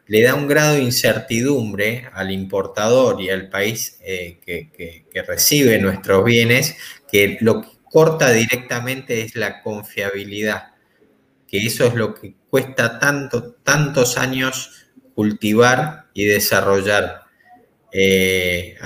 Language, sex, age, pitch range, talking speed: Spanish, male, 20-39, 105-130 Hz, 125 wpm